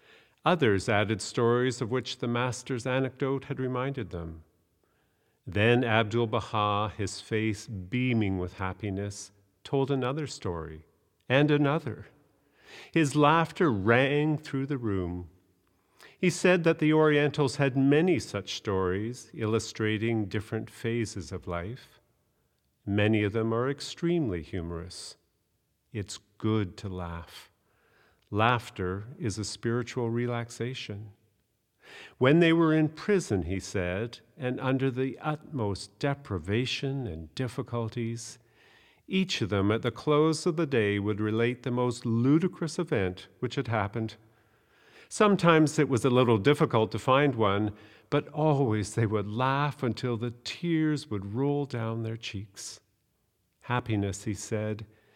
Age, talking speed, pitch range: 50-69, 125 wpm, 105-135 Hz